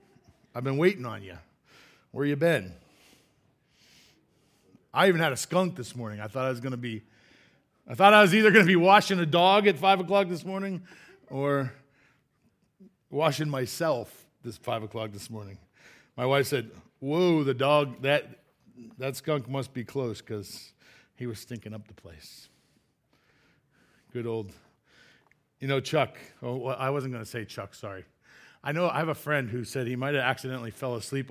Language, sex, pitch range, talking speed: English, male, 125-175 Hz, 175 wpm